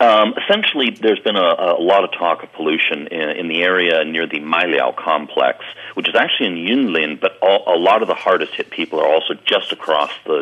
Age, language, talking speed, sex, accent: 40-59, English, 220 wpm, male, American